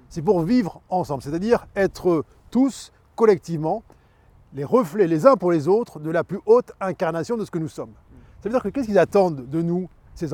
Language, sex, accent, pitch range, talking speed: French, male, French, 130-200 Hz, 220 wpm